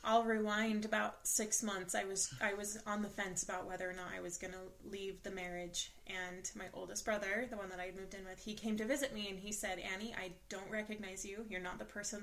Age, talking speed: 20-39, 250 wpm